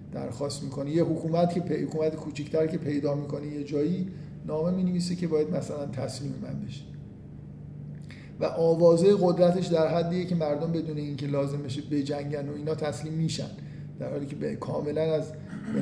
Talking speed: 165 wpm